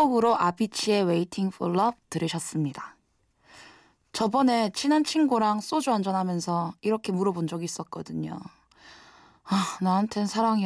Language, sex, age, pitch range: Korean, female, 20-39, 175-225 Hz